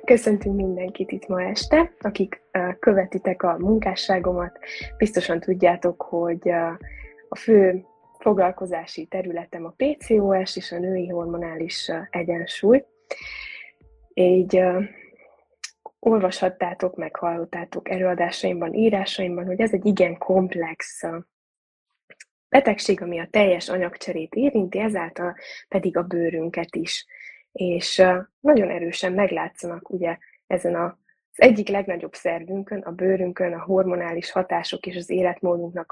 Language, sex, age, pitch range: Hungarian, female, 20-39, 170-200 Hz